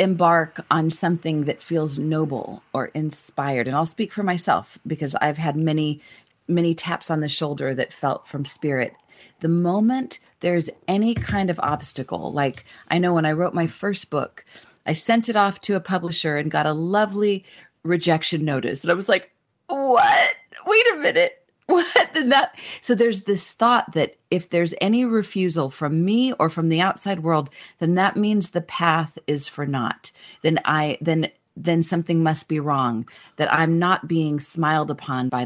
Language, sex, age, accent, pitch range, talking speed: English, female, 40-59, American, 150-185 Hz, 180 wpm